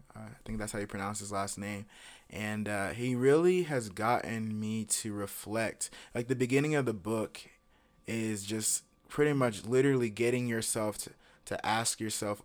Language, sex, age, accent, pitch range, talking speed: English, male, 20-39, American, 100-120 Hz, 170 wpm